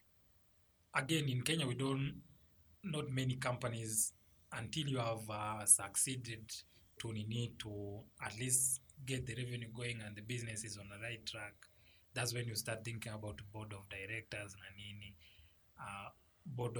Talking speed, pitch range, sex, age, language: 155 wpm, 100-135 Hz, male, 30-49, English